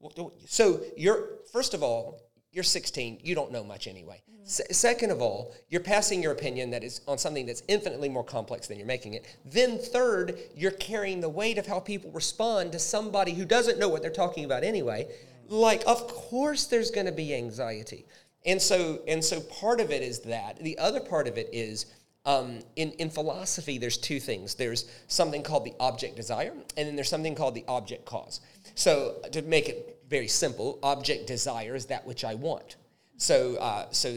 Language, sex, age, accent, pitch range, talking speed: English, male, 40-59, American, 125-195 Hz, 195 wpm